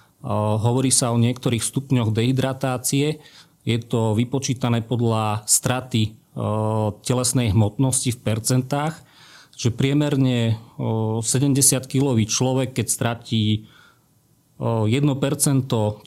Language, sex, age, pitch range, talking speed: Slovak, male, 40-59, 110-130 Hz, 85 wpm